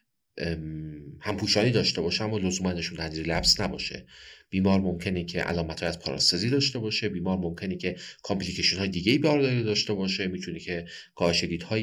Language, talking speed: Persian, 155 wpm